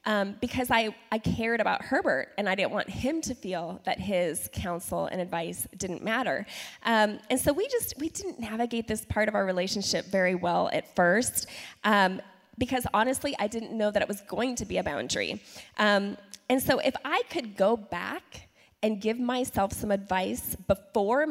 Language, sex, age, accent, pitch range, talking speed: English, female, 20-39, American, 200-245 Hz, 185 wpm